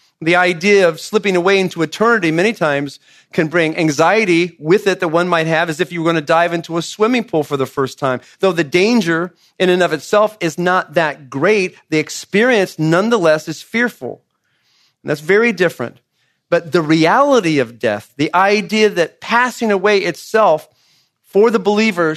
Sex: male